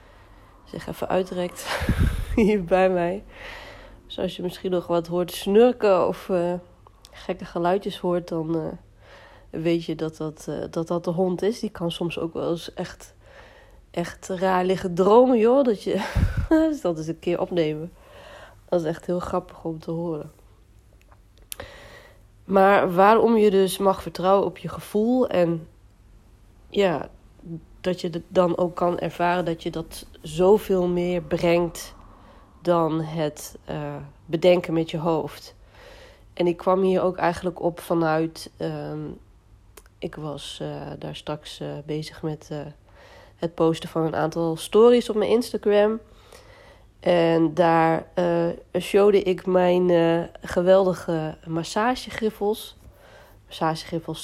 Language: Dutch